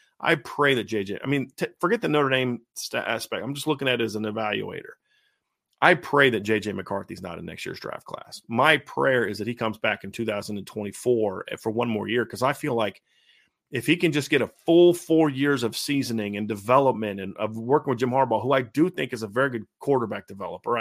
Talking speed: 230 wpm